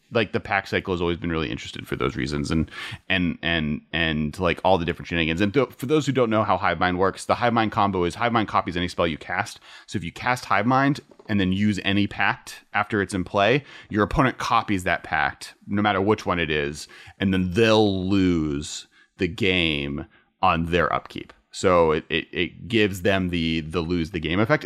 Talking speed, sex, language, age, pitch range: 220 wpm, male, English, 30-49, 90-115 Hz